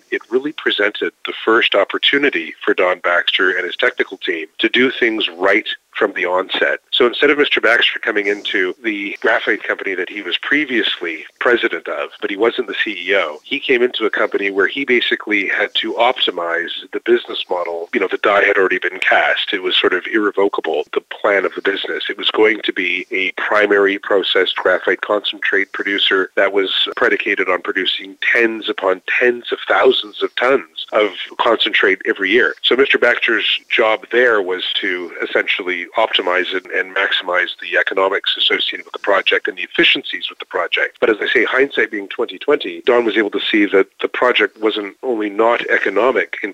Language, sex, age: English, male, 40-59